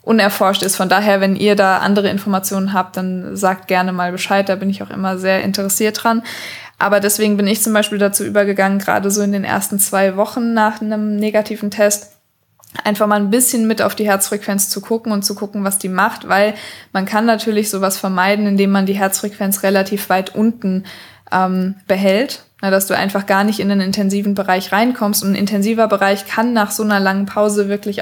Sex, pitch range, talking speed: female, 195-210 Hz, 200 wpm